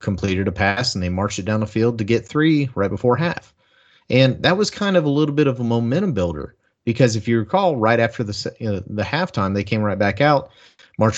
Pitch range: 105-135 Hz